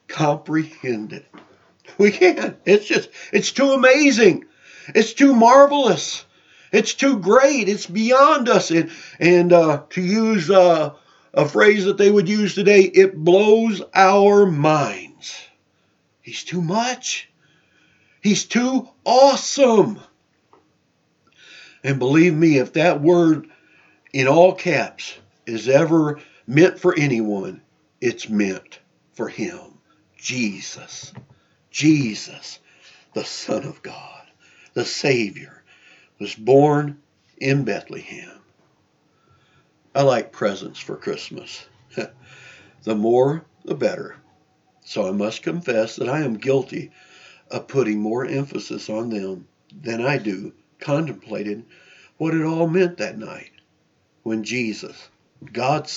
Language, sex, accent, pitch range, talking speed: English, male, American, 135-205 Hz, 115 wpm